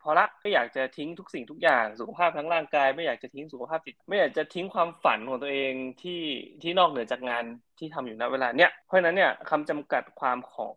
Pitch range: 120-150 Hz